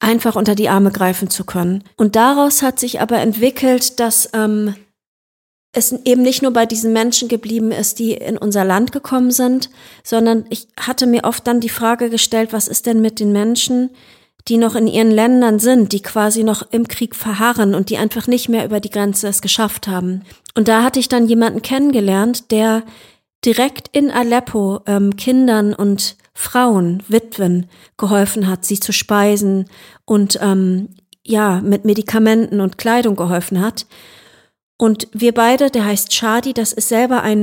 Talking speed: 175 wpm